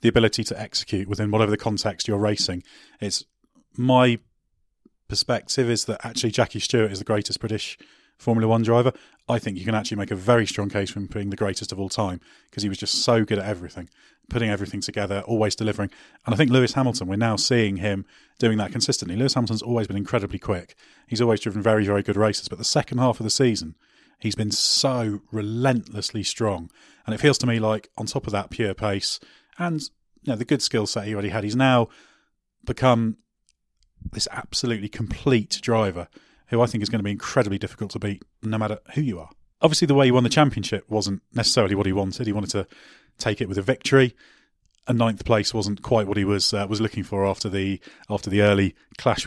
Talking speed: 215 wpm